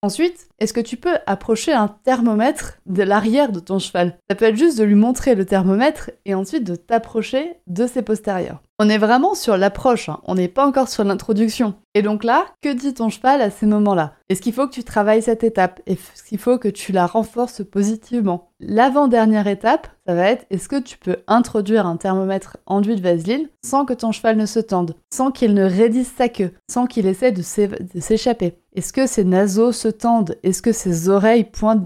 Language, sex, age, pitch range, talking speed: French, female, 20-39, 190-235 Hz, 210 wpm